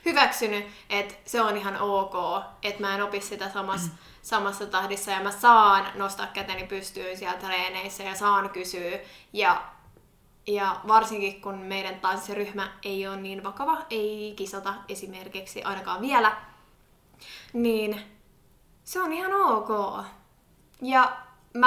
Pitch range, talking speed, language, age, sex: 195-225 Hz, 130 wpm, Finnish, 20-39, female